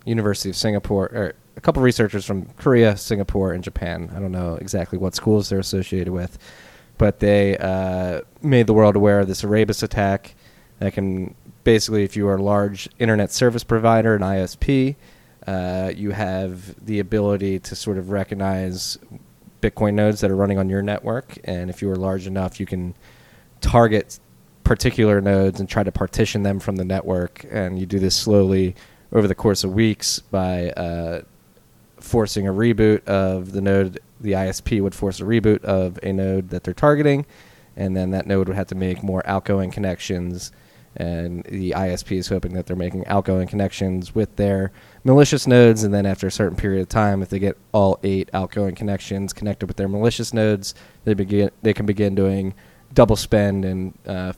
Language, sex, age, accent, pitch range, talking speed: English, male, 20-39, American, 95-105 Hz, 185 wpm